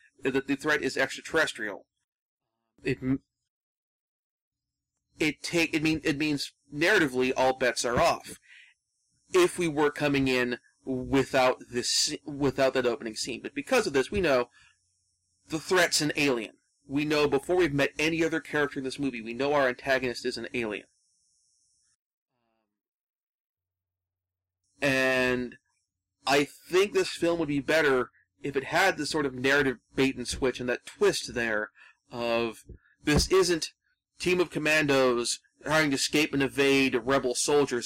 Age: 30-49